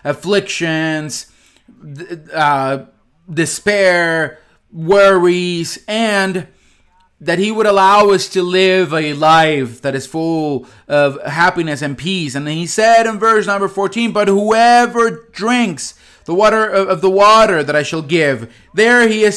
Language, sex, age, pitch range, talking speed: English, male, 30-49, 150-200 Hz, 135 wpm